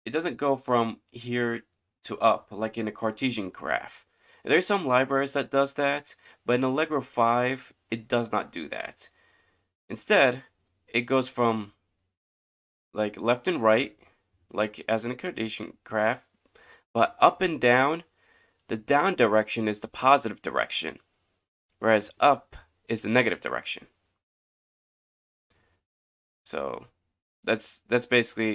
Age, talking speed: 20-39, 130 wpm